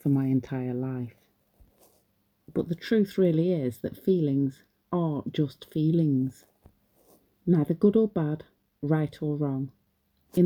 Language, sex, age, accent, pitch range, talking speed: English, female, 40-59, British, 145-200 Hz, 125 wpm